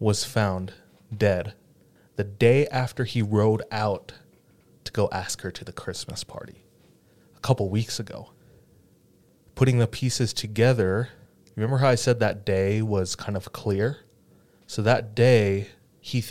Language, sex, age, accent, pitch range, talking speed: English, male, 20-39, American, 95-120 Hz, 145 wpm